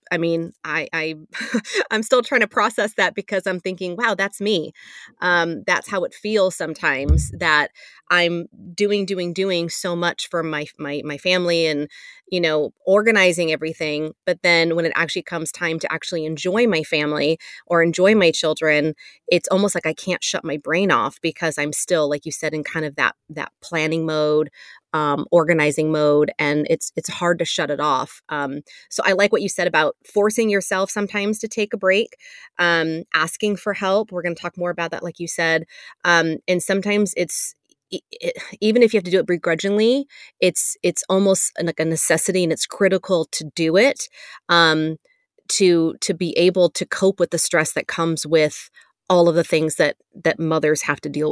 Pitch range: 160-200 Hz